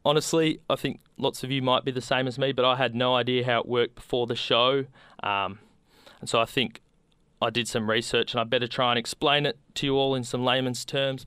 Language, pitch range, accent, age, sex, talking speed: English, 115-135 Hz, Australian, 20-39, male, 245 wpm